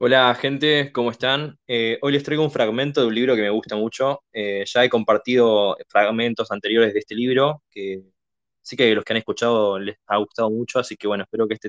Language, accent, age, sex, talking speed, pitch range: Spanish, Argentinian, 20-39, male, 220 wpm, 115-140 Hz